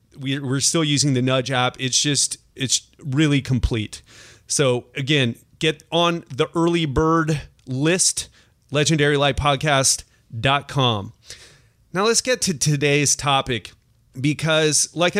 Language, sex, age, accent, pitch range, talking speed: English, male, 30-49, American, 130-170 Hz, 110 wpm